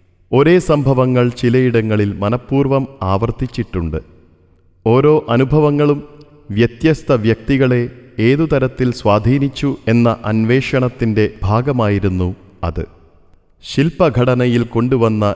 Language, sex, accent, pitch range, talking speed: Malayalam, male, native, 105-130 Hz, 70 wpm